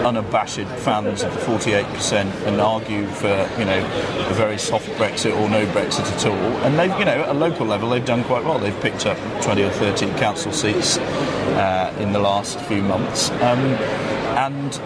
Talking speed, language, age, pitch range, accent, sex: 190 wpm, English, 40-59, 100-115 Hz, British, male